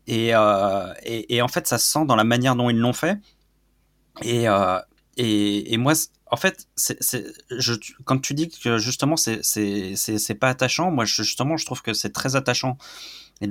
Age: 30-49